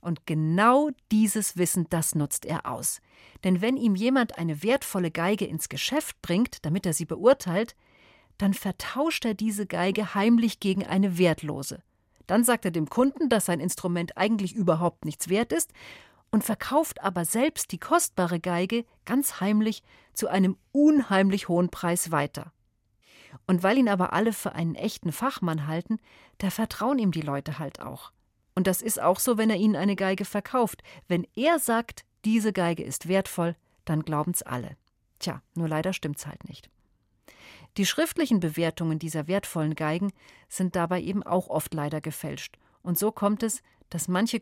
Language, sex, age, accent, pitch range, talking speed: German, female, 40-59, German, 165-215 Hz, 165 wpm